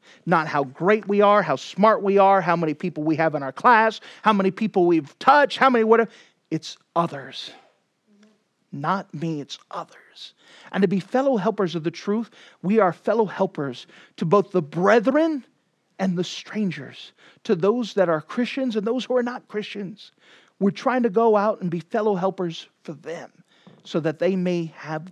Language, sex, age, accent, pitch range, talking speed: English, male, 40-59, American, 160-225 Hz, 185 wpm